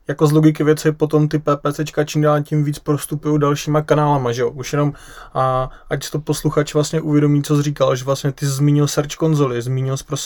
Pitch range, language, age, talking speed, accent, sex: 135-150 Hz, Czech, 20-39, 200 wpm, native, male